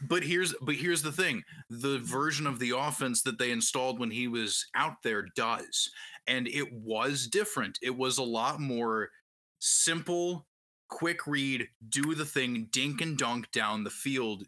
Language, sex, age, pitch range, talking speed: English, male, 20-39, 120-160 Hz, 170 wpm